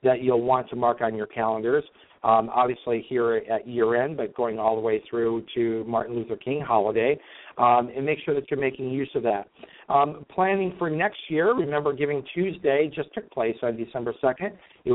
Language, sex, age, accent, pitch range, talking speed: English, male, 50-69, American, 110-135 Hz, 195 wpm